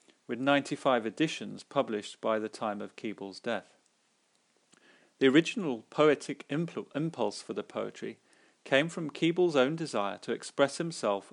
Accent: British